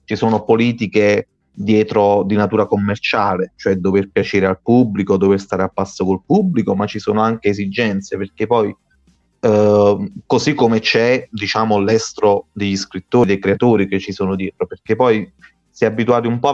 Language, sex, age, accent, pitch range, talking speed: Italian, male, 30-49, native, 100-115 Hz, 165 wpm